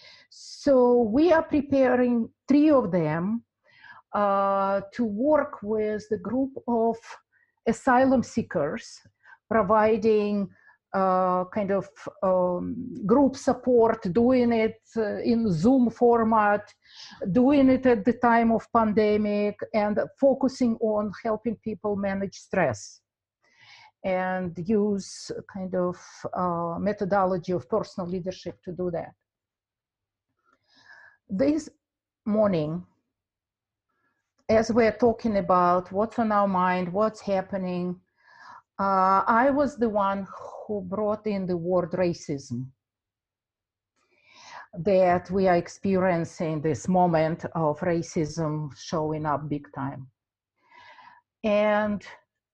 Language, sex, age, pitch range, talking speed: English, female, 50-69, 180-245 Hz, 105 wpm